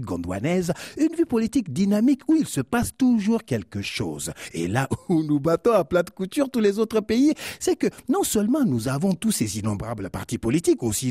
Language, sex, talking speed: French, male, 200 wpm